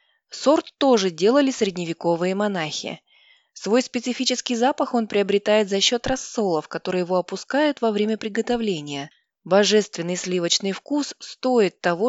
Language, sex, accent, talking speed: Russian, female, native, 120 wpm